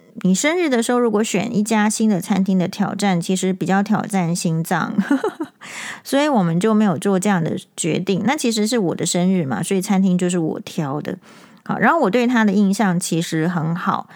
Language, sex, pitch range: Chinese, female, 180-225 Hz